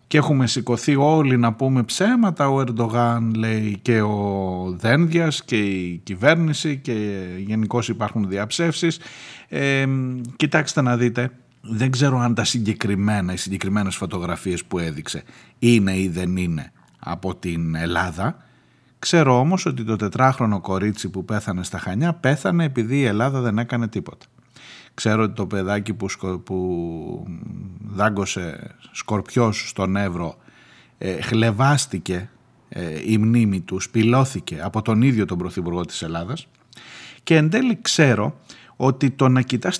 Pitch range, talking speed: 100-135 Hz, 135 wpm